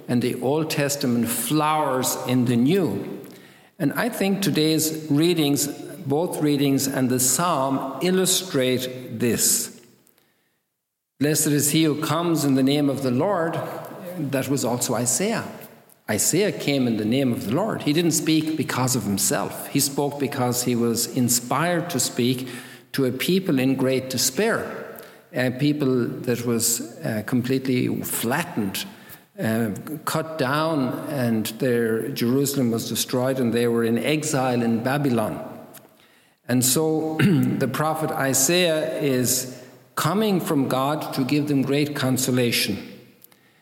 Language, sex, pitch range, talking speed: English, male, 125-150 Hz, 135 wpm